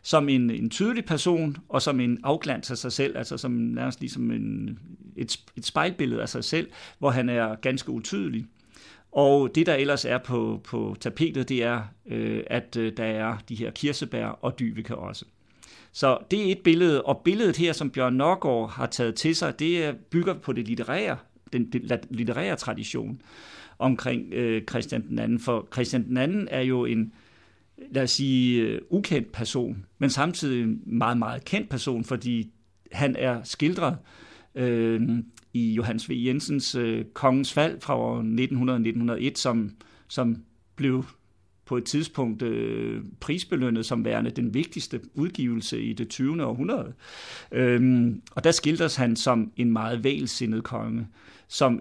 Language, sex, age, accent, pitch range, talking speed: Danish, male, 50-69, native, 115-140 Hz, 160 wpm